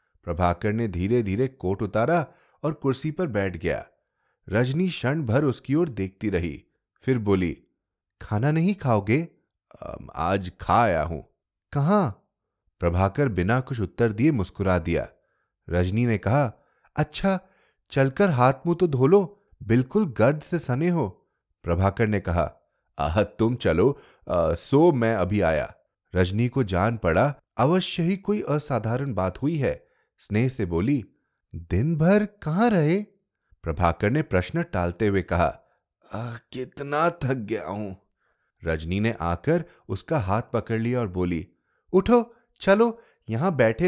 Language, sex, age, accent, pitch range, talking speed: Hindi, male, 30-49, native, 95-165 Hz, 140 wpm